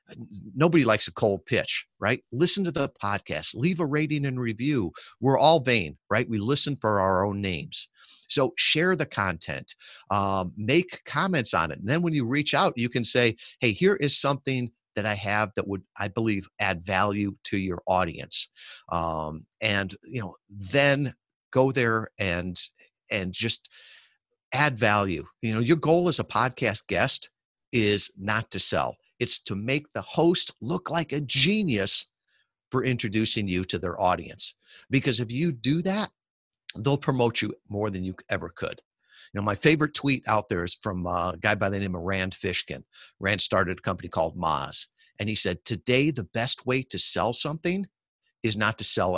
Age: 50-69